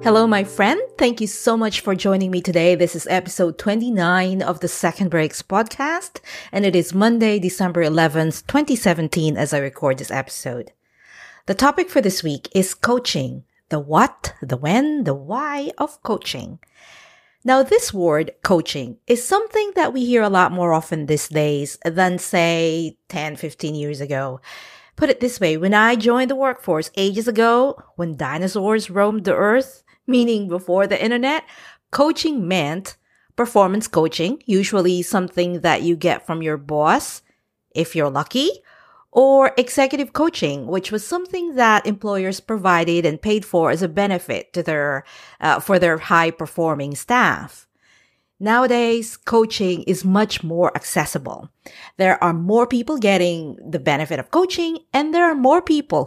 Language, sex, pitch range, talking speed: English, female, 170-245 Hz, 155 wpm